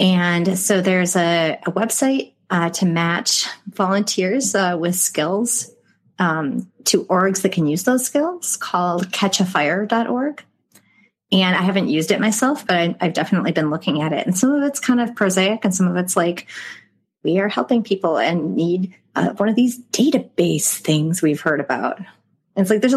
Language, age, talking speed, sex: English, 30-49, 180 wpm, female